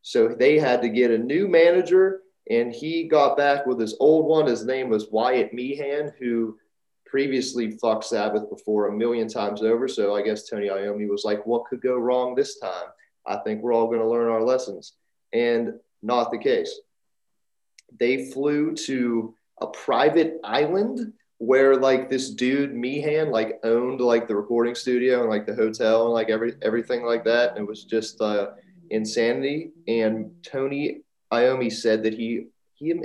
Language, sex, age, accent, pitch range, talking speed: English, male, 30-49, American, 110-160 Hz, 175 wpm